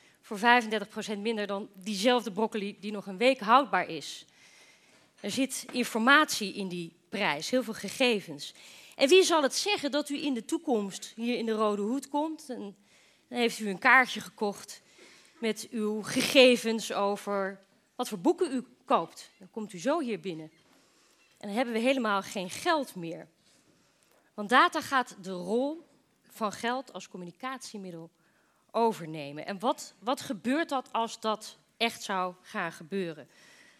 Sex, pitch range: female, 195-260 Hz